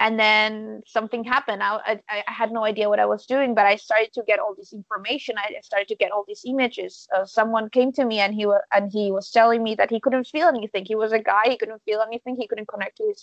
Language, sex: English, female